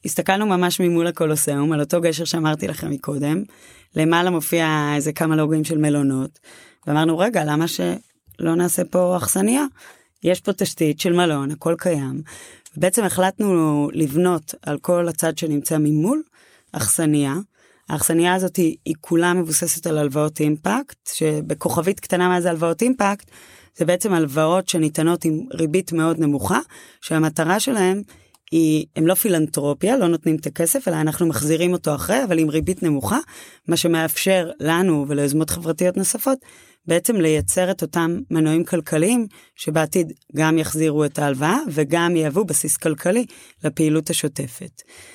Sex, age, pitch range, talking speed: female, 20-39, 155-180 Hz, 140 wpm